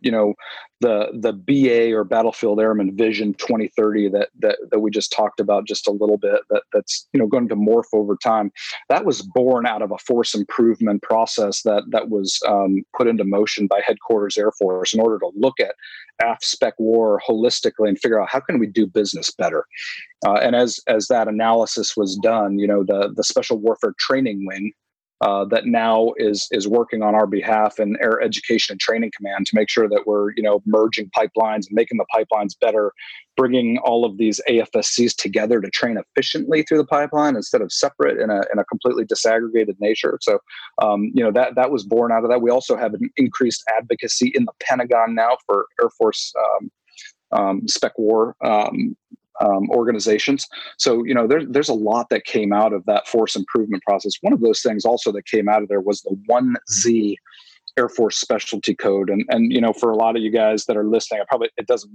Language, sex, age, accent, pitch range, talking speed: English, male, 40-59, American, 105-125 Hz, 210 wpm